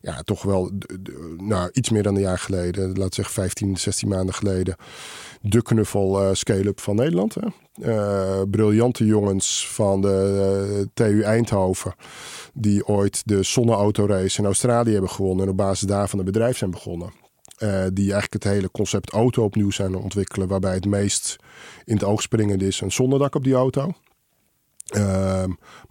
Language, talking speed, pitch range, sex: Dutch, 165 wpm, 95-110 Hz, male